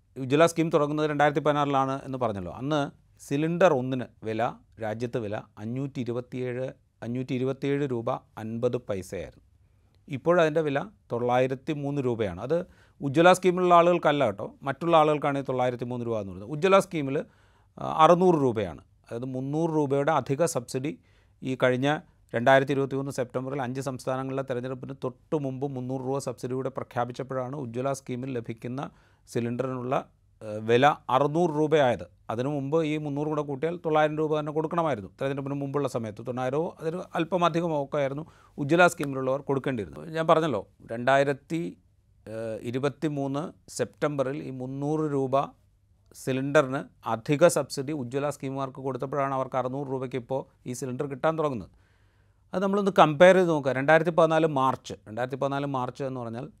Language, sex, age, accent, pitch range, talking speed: Malayalam, male, 30-49, native, 125-150 Hz, 125 wpm